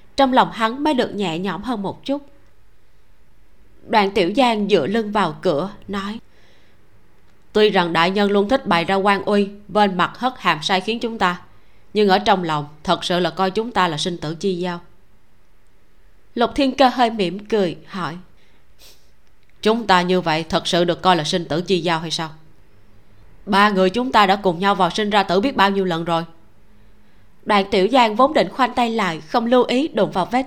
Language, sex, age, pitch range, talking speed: Vietnamese, female, 20-39, 175-225 Hz, 205 wpm